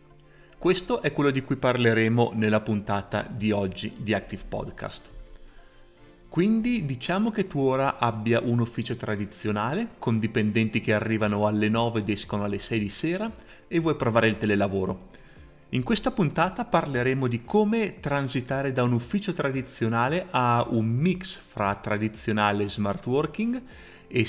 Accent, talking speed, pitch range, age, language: native, 145 wpm, 105-135 Hz, 30-49, Italian